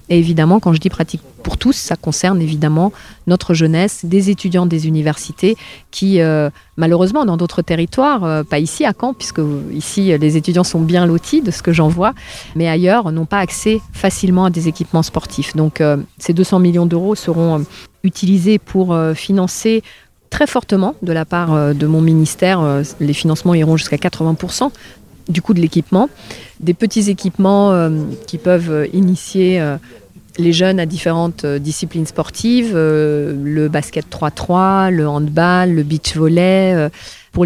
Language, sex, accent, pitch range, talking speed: French, female, French, 155-190 Hz, 160 wpm